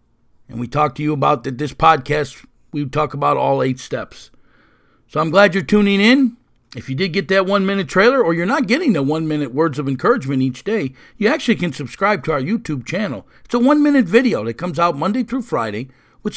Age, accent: 50-69, American